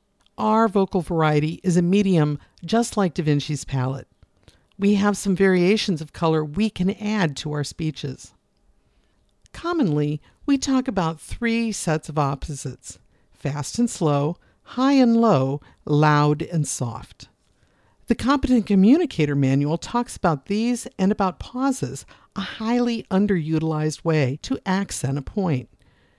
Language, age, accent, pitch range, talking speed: English, 50-69, American, 145-210 Hz, 135 wpm